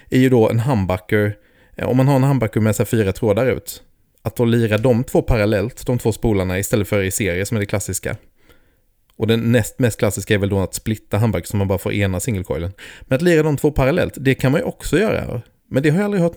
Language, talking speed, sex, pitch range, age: Swedish, 245 wpm, male, 100-130 Hz, 30-49